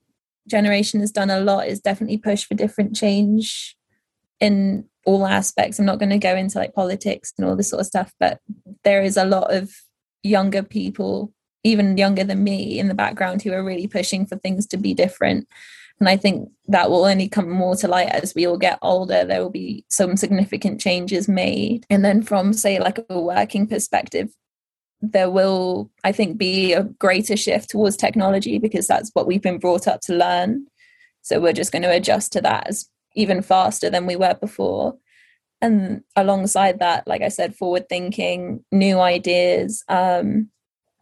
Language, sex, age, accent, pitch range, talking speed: English, female, 20-39, British, 180-210 Hz, 185 wpm